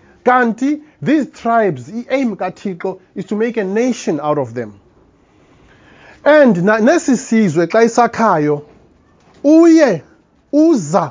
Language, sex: English, male